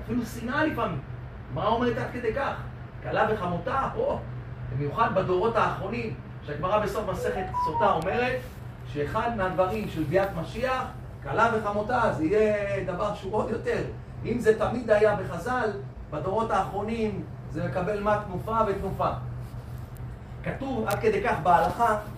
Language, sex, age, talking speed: Hebrew, male, 30-49, 135 wpm